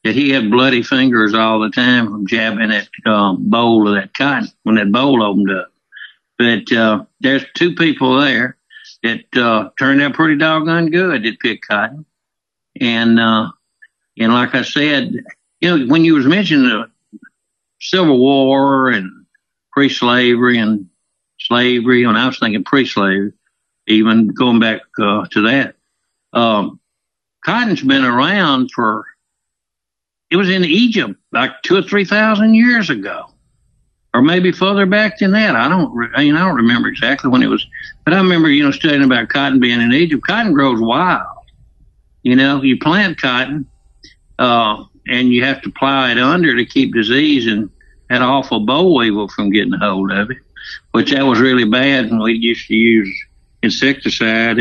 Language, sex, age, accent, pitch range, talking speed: English, male, 60-79, American, 115-165 Hz, 170 wpm